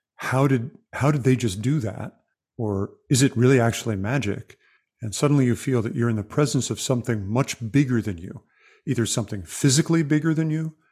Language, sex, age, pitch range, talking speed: English, male, 50-69, 105-130 Hz, 190 wpm